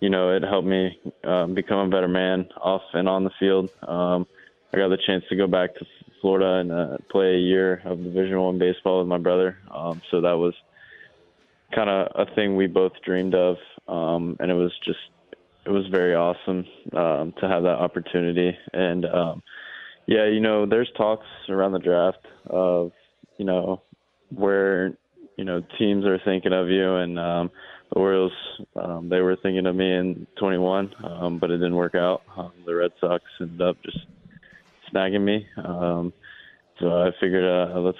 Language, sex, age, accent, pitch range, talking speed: English, male, 20-39, American, 90-95 Hz, 185 wpm